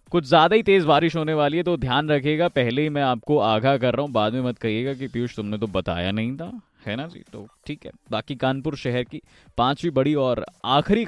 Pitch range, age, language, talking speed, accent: 120-170 Hz, 20-39, Hindi, 240 wpm, native